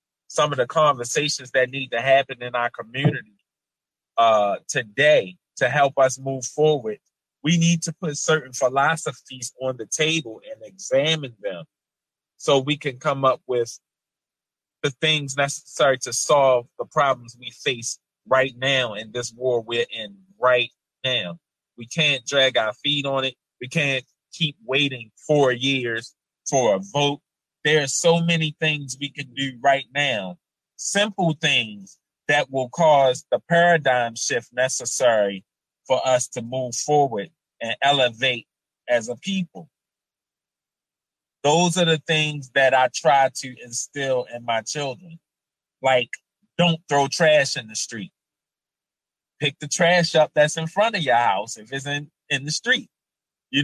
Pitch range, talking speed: 125-155 Hz, 150 wpm